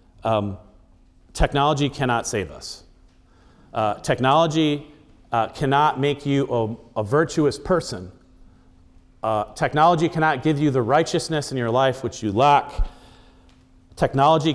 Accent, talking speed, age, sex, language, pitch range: American, 120 wpm, 40-59, male, English, 110-150 Hz